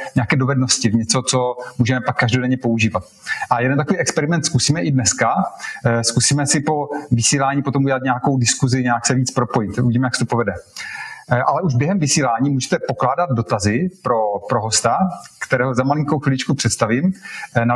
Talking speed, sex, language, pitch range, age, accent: 165 wpm, male, Czech, 120-150 Hz, 30-49, native